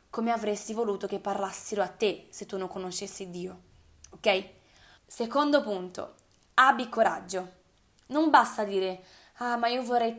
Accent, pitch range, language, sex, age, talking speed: native, 200-240 Hz, Italian, female, 20-39, 140 wpm